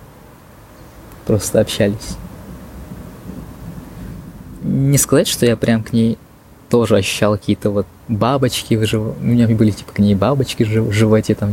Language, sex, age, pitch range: Russian, male, 20-39, 80-115 Hz